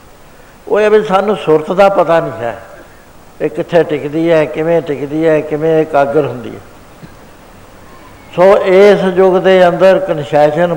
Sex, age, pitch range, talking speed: male, 60-79, 145-180 Hz, 150 wpm